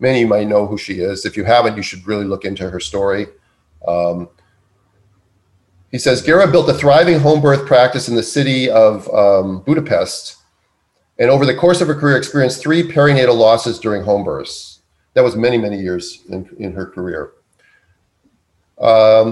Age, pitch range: 40-59, 100-140 Hz